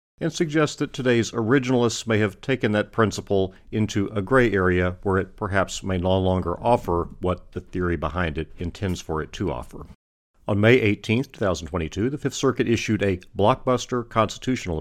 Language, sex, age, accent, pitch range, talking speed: English, male, 50-69, American, 85-110 Hz, 170 wpm